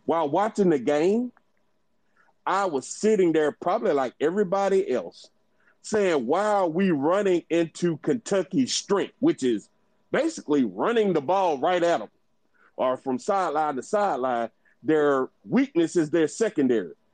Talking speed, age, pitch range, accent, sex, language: 135 wpm, 40-59, 165-235 Hz, American, male, English